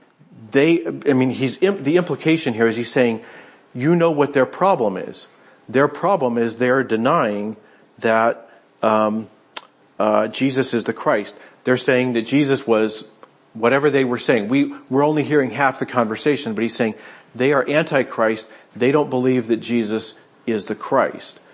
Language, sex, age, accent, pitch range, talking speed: English, male, 40-59, American, 110-130 Hz, 160 wpm